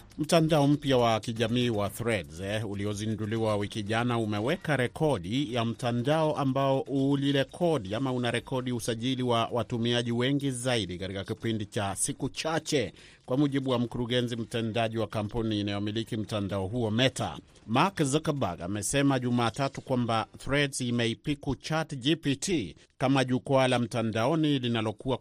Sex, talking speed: male, 130 wpm